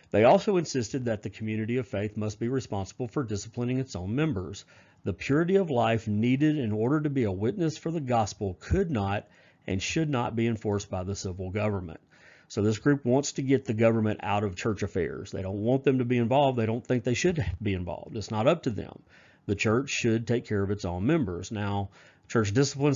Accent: American